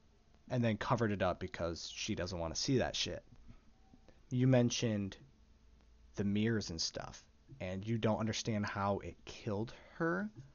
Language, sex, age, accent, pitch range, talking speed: English, male, 30-49, American, 90-120 Hz, 155 wpm